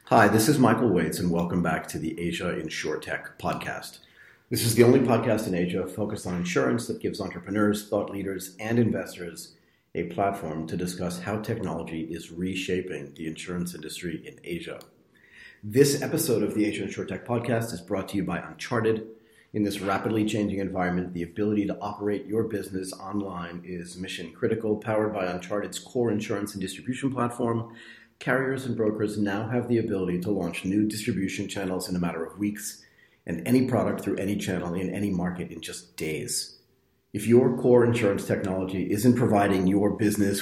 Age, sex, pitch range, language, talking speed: 40-59, male, 90-110 Hz, English, 175 wpm